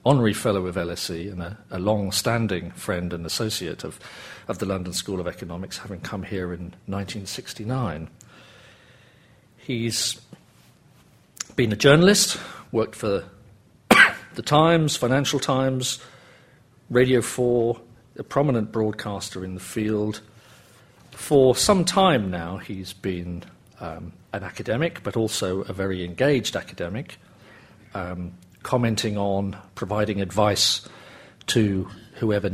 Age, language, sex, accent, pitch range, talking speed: 50-69, English, male, British, 95-120 Hz, 120 wpm